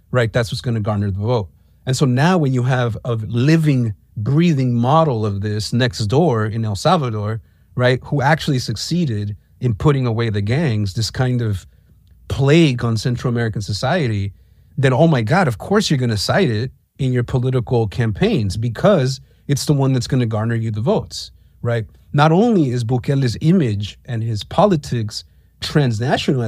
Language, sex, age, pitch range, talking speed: English, male, 40-59, 110-135 Hz, 175 wpm